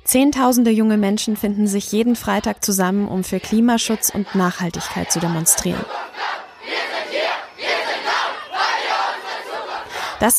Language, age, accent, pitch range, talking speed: German, 20-39, German, 195-235 Hz, 90 wpm